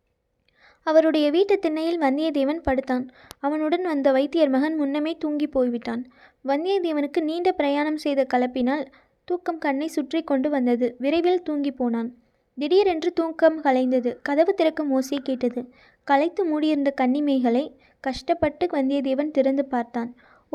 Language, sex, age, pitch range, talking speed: Tamil, female, 20-39, 265-320 Hz, 115 wpm